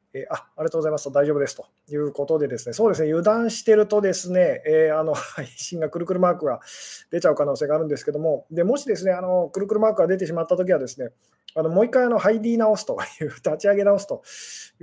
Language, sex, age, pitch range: Japanese, male, 20-39, 150-195 Hz